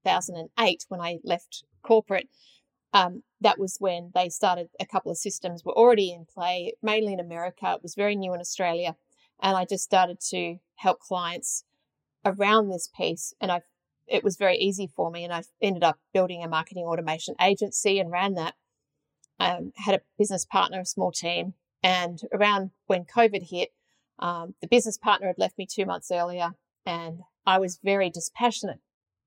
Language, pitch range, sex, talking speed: English, 180-215 Hz, female, 180 wpm